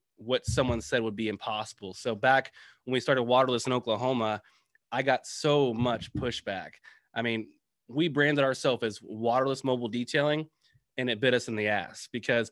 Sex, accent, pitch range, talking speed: male, American, 115-140 Hz, 175 wpm